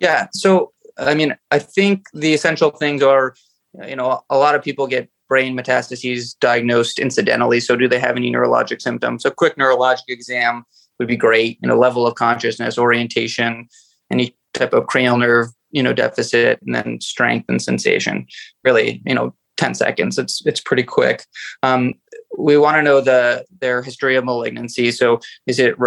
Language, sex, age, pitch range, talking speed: English, male, 20-39, 120-140 Hz, 180 wpm